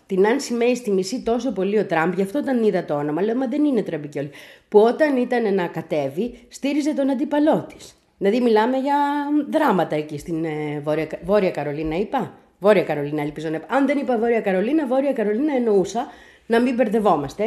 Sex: female